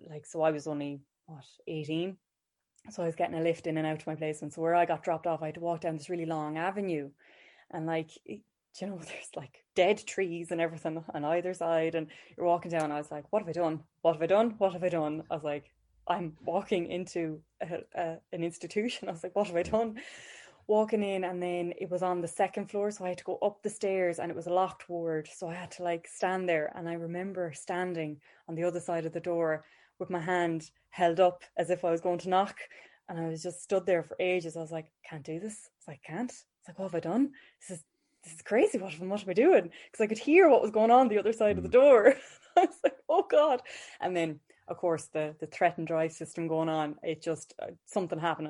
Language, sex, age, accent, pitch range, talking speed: English, female, 20-39, Irish, 160-195 Hz, 255 wpm